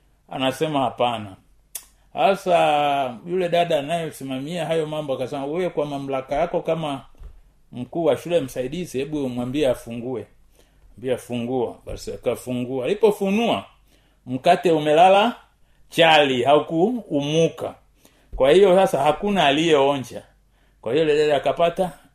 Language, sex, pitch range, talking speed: Swahili, male, 135-205 Hz, 105 wpm